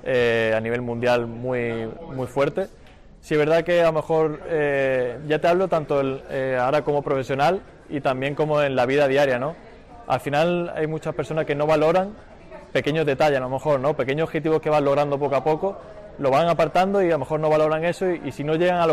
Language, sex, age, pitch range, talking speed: Spanish, male, 20-39, 135-160 Hz, 230 wpm